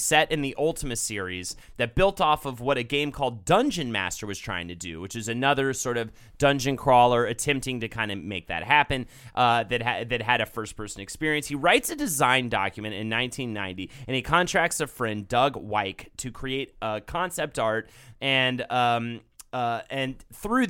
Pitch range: 110-150 Hz